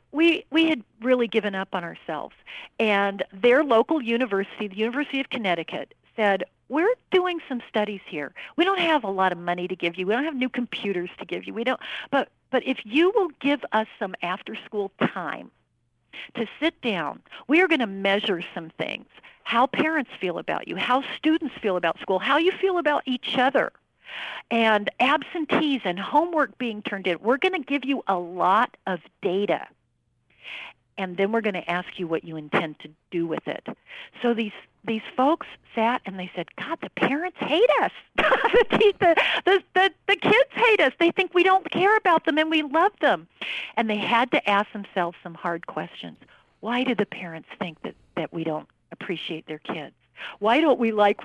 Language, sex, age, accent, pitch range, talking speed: English, female, 50-69, American, 185-300 Hz, 190 wpm